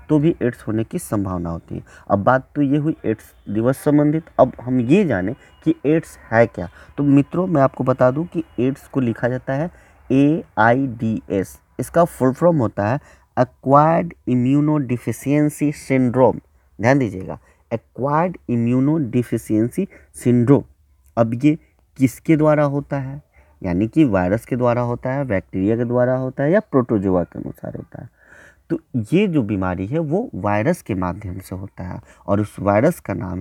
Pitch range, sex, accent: 100-145 Hz, male, native